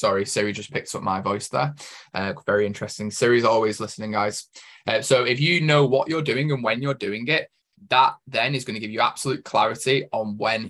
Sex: male